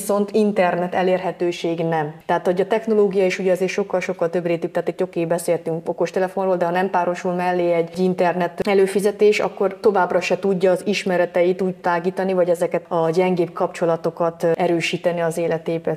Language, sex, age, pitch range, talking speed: Hungarian, female, 30-49, 175-195 Hz, 170 wpm